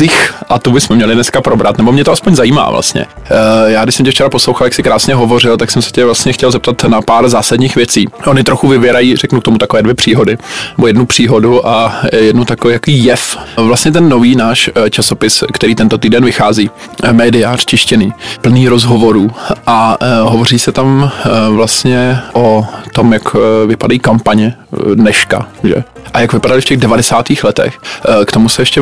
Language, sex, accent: Czech, male, native